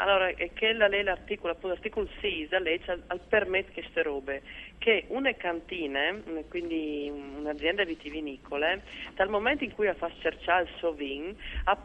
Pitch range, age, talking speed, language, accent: 150-195 Hz, 40-59, 155 wpm, Italian, native